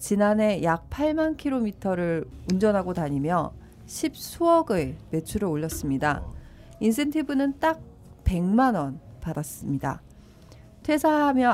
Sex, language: female, Korean